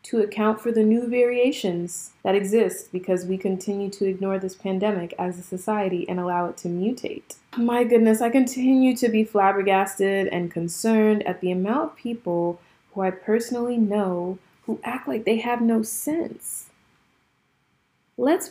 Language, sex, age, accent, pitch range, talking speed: English, female, 20-39, American, 195-240 Hz, 160 wpm